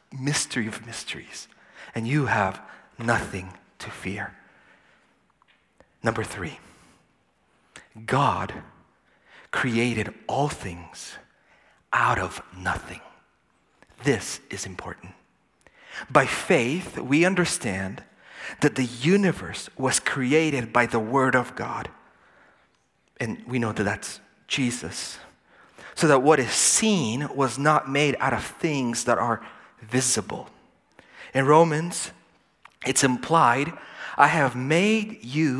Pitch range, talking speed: 110-155 Hz, 105 wpm